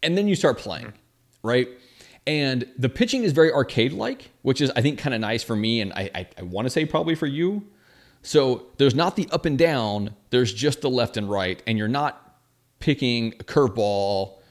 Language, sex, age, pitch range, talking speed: English, male, 30-49, 105-140 Hz, 205 wpm